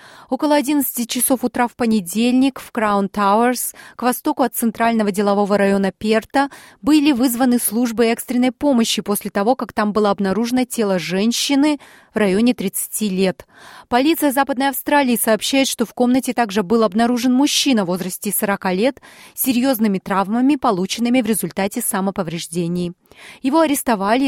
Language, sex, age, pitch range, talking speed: Russian, female, 30-49, 200-260 Hz, 140 wpm